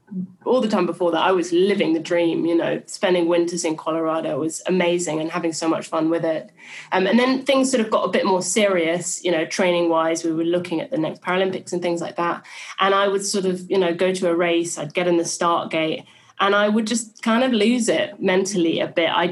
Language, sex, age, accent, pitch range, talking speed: English, female, 30-49, British, 170-205 Hz, 250 wpm